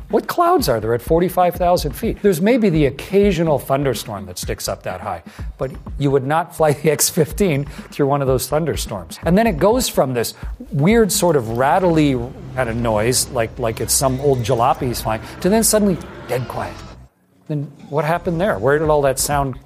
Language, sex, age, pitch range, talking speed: English, male, 40-59, 120-170 Hz, 195 wpm